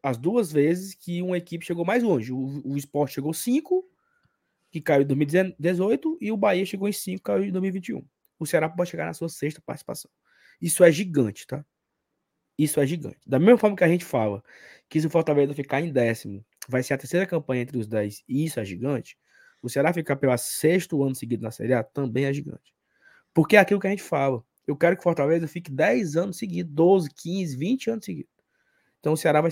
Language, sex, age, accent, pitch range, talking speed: Portuguese, male, 20-39, Brazilian, 140-195 Hz, 220 wpm